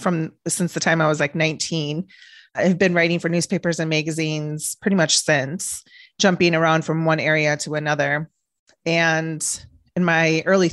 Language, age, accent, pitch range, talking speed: English, 30-49, American, 155-185 Hz, 160 wpm